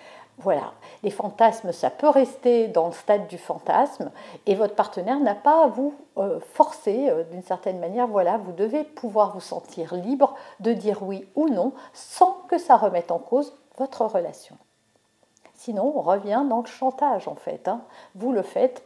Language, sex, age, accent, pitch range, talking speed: French, female, 50-69, French, 195-270 Hz, 170 wpm